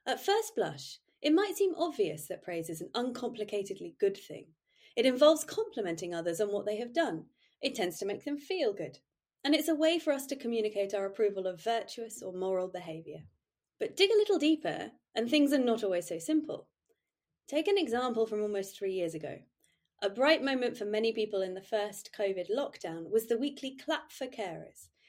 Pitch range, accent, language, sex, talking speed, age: 195-300 Hz, British, English, female, 195 wpm, 30-49